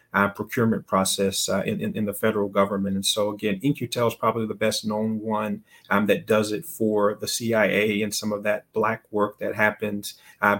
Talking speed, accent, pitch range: 205 wpm, American, 105-115 Hz